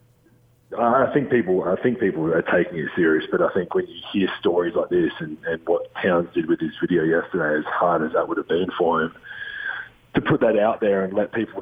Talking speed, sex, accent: 230 wpm, male, Australian